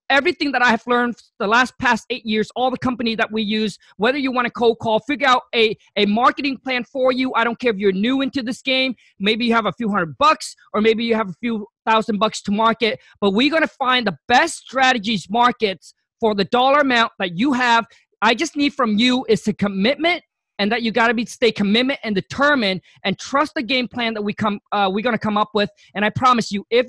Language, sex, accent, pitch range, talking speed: English, male, American, 220-275 Hz, 245 wpm